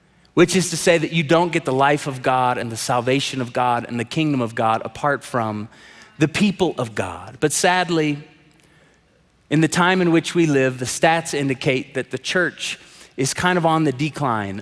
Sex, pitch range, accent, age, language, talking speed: male, 130-170 Hz, American, 30-49, English, 200 wpm